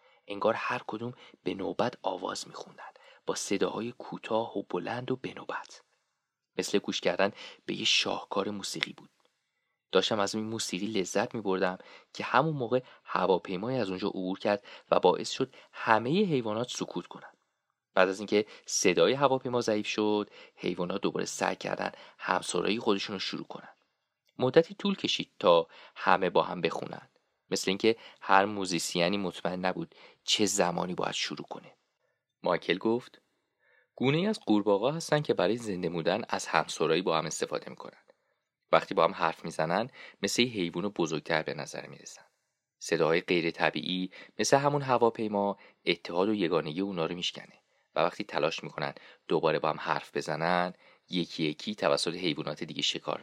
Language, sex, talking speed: English, male, 155 wpm